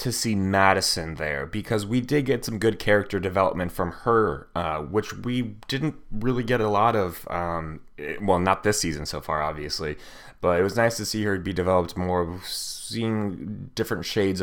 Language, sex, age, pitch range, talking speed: English, male, 20-39, 85-105 Hz, 185 wpm